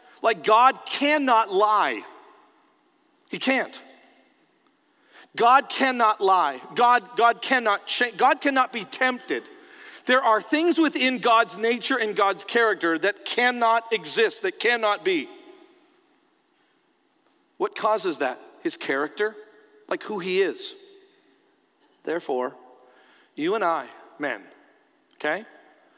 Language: English